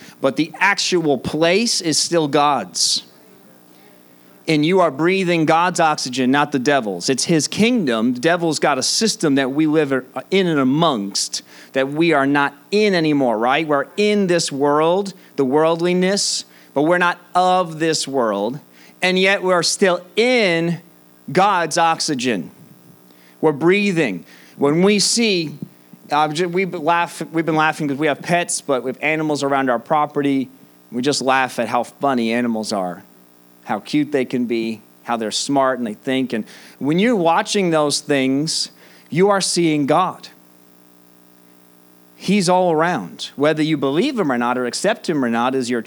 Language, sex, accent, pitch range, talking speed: English, male, American, 115-170 Hz, 160 wpm